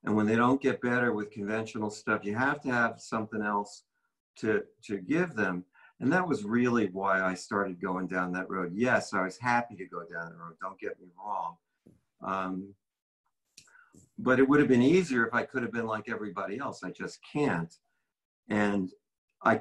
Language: English